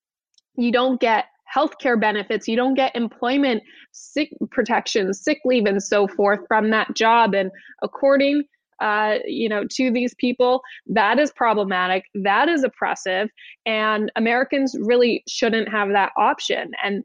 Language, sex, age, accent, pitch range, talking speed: English, female, 20-39, American, 215-260 Hz, 150 wpm